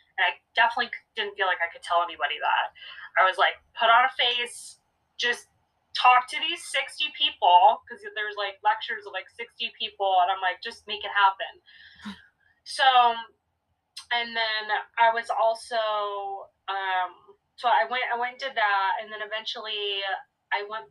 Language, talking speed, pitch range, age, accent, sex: English, 165 wpm, 185-230 Hz, 20-39, American, female